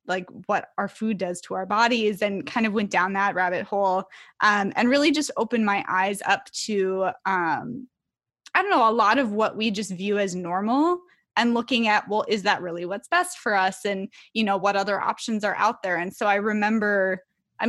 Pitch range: 195-235 Hz